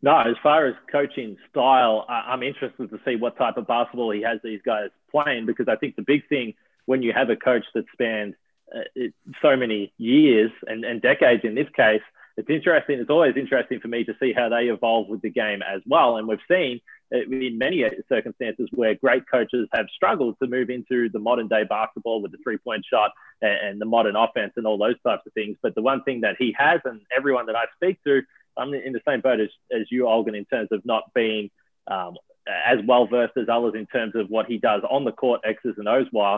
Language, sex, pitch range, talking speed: English, male, 110-130 Hz, 220 wpm